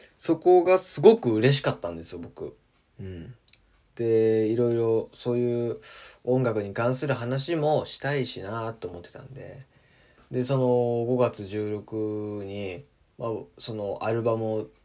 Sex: male